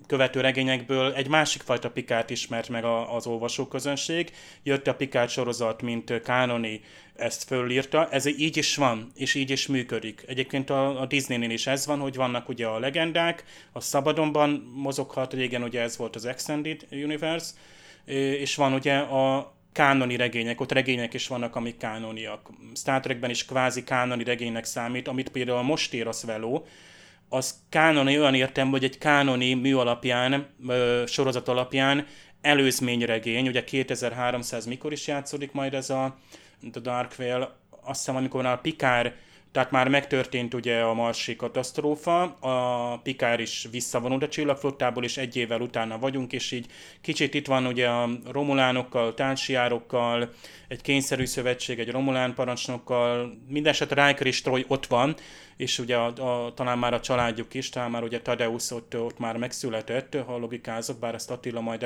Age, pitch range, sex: 30-49, 120-135 Hz, male